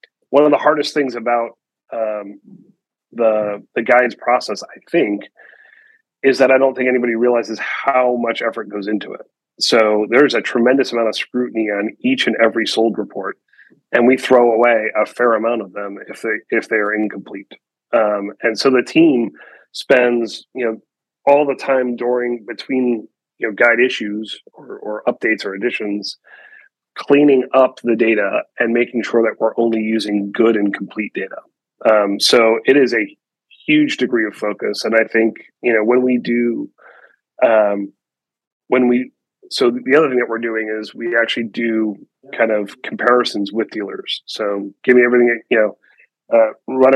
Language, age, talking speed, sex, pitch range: English, 30-49, 175 wpm, male, 110-125 Hz